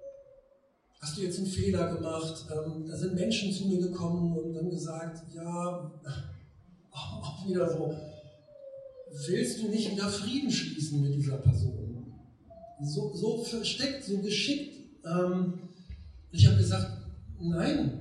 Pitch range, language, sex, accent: 150-215 Hz, German, male, German